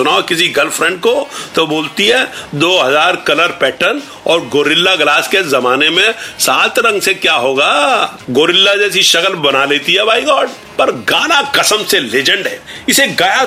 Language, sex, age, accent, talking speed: Hindi, male, 50-69, native, 170 wpm